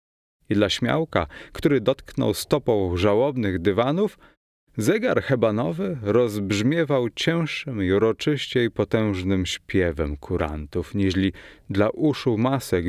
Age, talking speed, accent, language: 30-49, 100 wpm, native, Polish